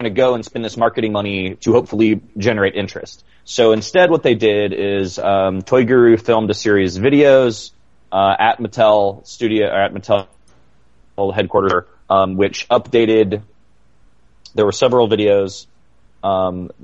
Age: 30-49